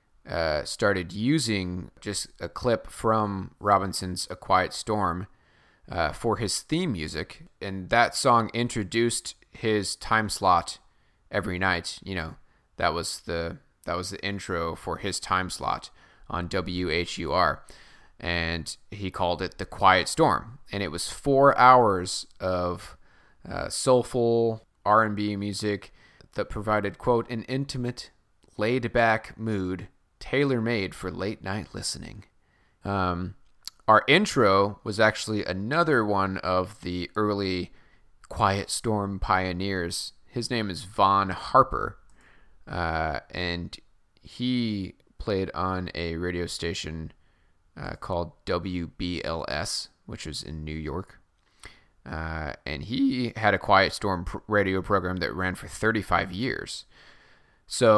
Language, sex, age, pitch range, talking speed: English, male, 30-49, 90-110 Hz, 120 wpm